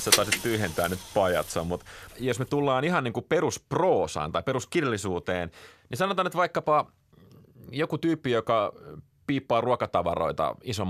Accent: native